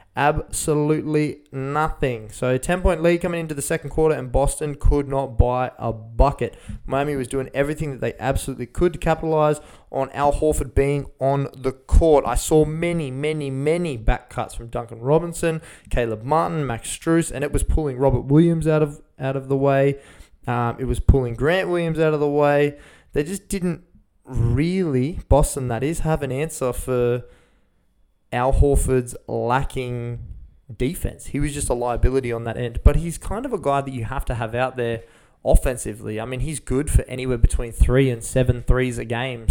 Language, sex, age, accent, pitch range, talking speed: English, male, 20-39, Australian, 120-145 Hz, 180 wpm